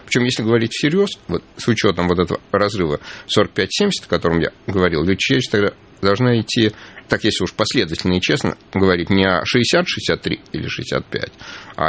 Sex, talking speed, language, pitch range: male, 160 wpm, Russian, 95-140 Hz